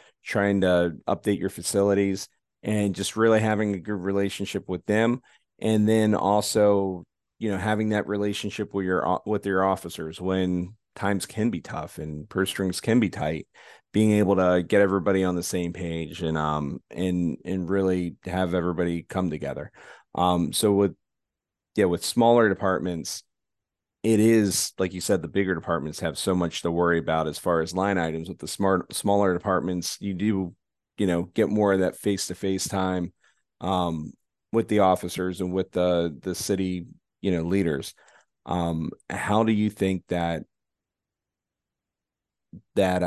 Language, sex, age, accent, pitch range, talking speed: English, male, 30-49, American, 90-105 Hz, 160 wpm